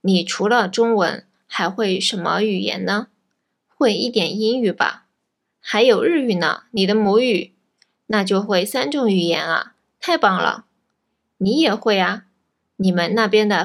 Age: 20-39